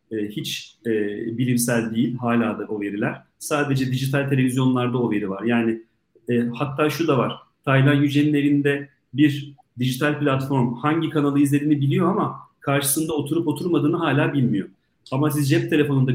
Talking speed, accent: 145 wpm, native